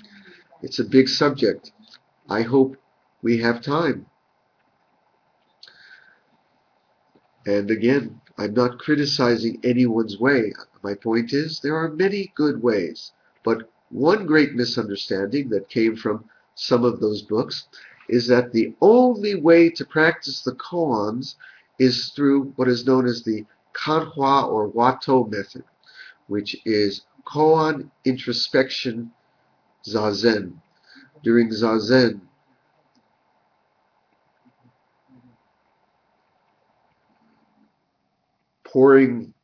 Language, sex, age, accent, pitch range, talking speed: English, male, 50-69, American, 115-150 Hz, 95 wpm